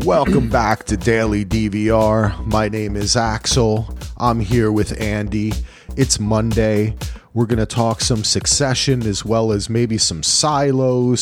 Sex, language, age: male, English, 30-49